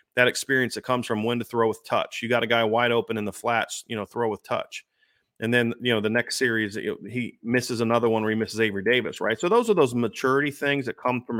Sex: male